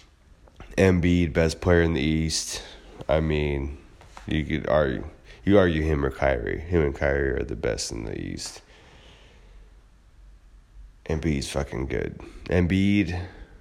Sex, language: male, English